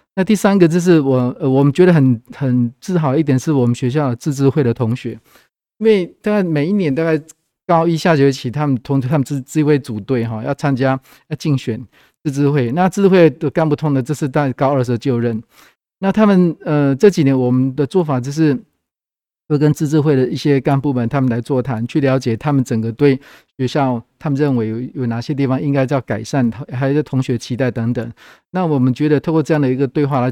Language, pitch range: Chinese, 125-155 Hz